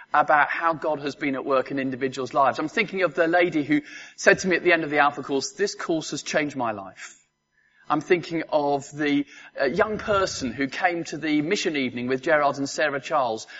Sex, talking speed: male, 220 wpm